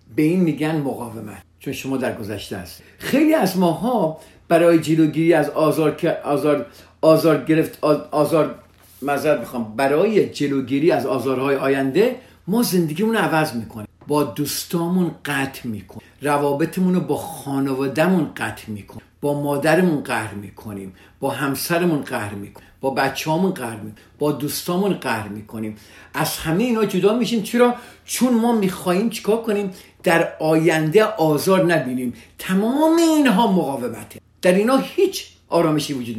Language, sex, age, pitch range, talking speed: Persian, male, 50-69, 130-190 Hz, 130 wpm